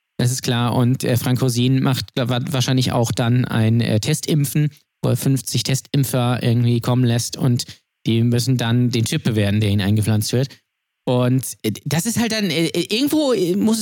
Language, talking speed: German, 185 wpm